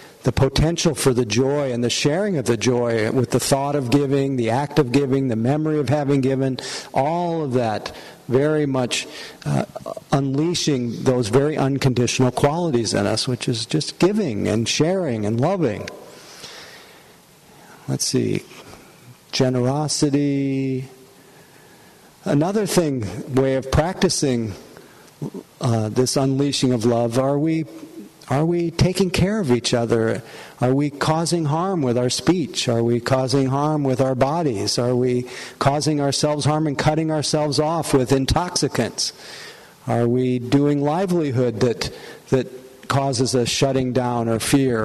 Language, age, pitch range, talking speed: English, 50-69, 125-150 Hz, 140 wpm